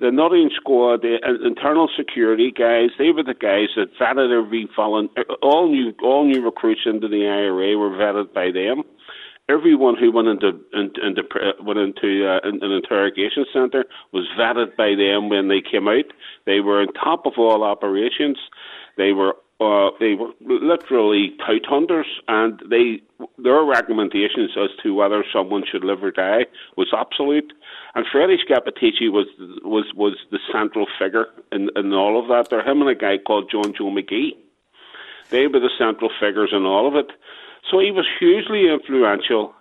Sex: male